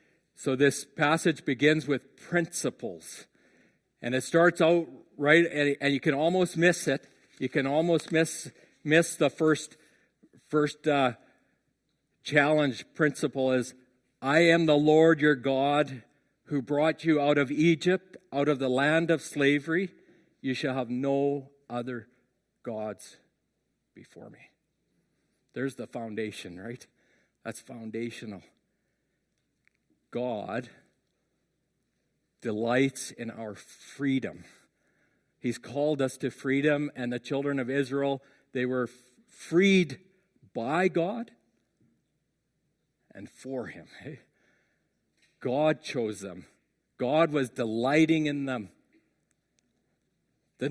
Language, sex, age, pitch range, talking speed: English, male, 50-69, 125-155 Hz, 110 wpm